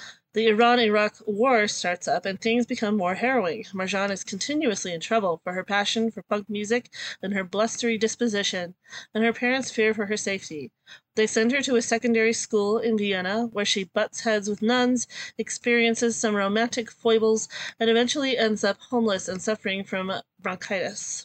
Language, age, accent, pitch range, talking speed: English, 30-49, American, 195-230 Hz, 170 wpm